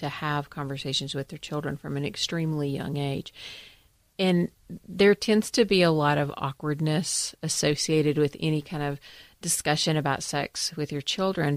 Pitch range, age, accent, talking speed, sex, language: 145-185 Hz, 40-59, American, 160 wpm, female, English